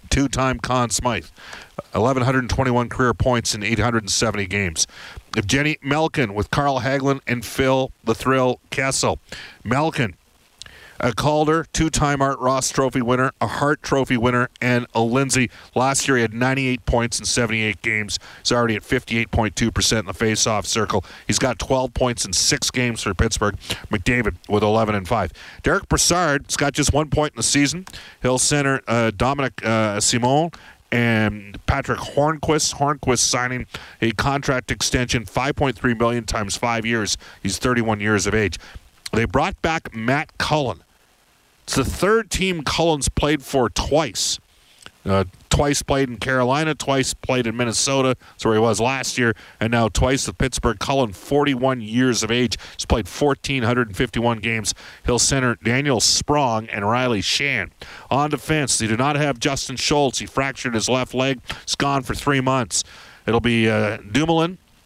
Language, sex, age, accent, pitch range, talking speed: English, male, 50-69, American, 110-135 Hz, 160 wpm